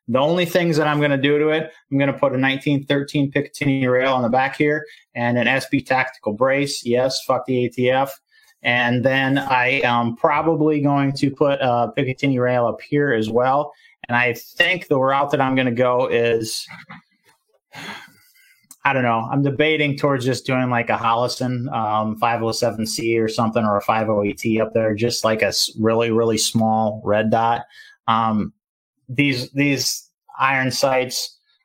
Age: 30-49